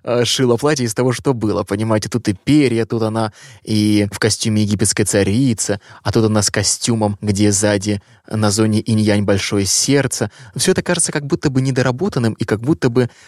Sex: male